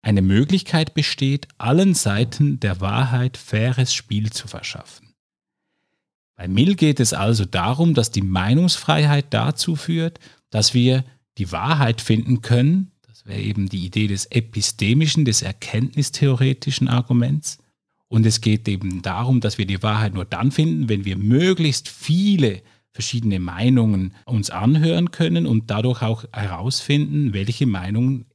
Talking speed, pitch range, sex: 140 wpm, 105-145 Hz, male